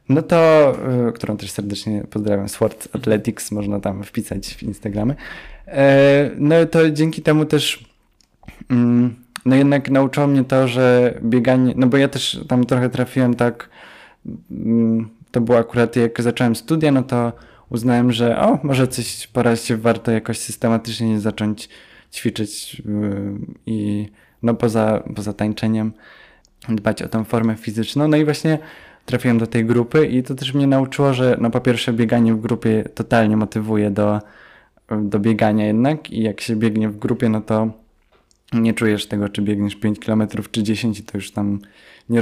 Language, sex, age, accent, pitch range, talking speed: Polish, male, 20-39, native, 110-125 Hz, 155 wpm